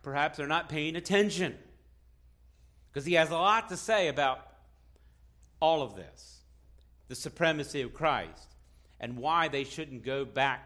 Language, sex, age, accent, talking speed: English, male, 50-69, American, 145 wpm